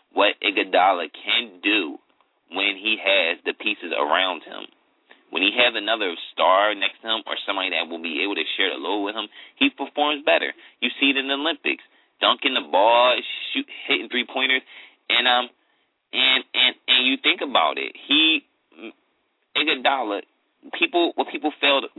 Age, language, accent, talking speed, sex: 20-39, English, American, 165 wpm, male